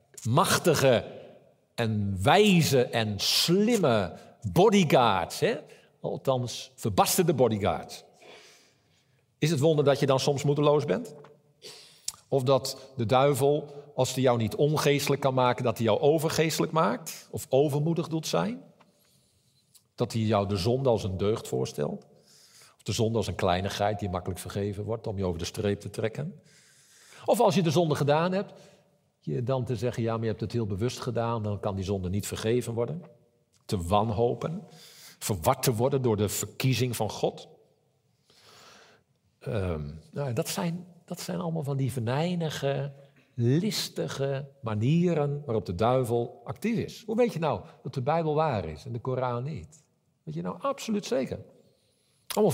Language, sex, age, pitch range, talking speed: Dutch, male, 50-69, 115-150 Hz, 155 wpm